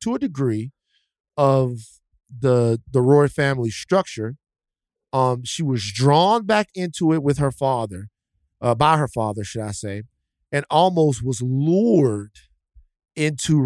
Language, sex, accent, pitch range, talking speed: English, male, American, 120-160 Hz, 135 wpm